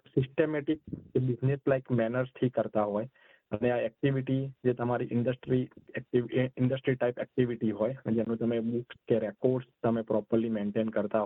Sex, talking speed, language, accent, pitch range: male, 85 wpm, Gujarati, native, 115-130 Hz